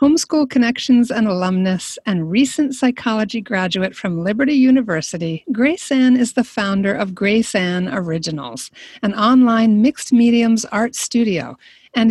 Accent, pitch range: American, 185-255 Hz